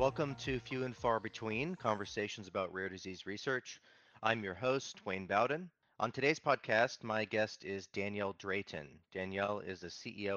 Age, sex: 30-49, male